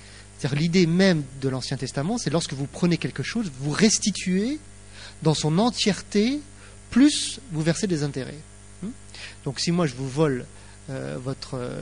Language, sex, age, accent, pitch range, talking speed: English, male, 30-49, French, 125-170 Hz, 155 wpm